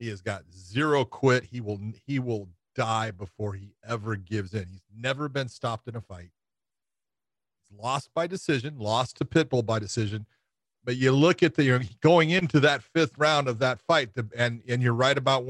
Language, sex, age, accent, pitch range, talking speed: English, male, 40-59, American, 110-140 Hz, 200 wpm